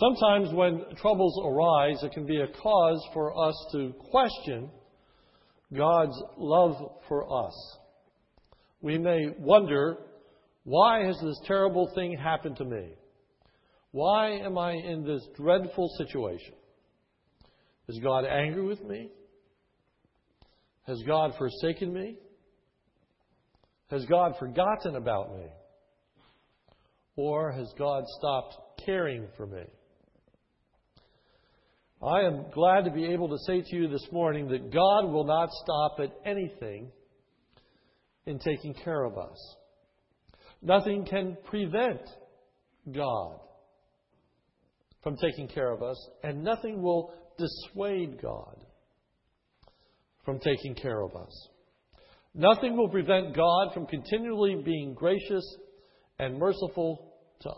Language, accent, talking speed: English, American, 115 wpm